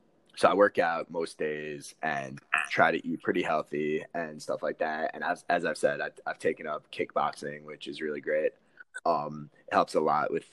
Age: 20-39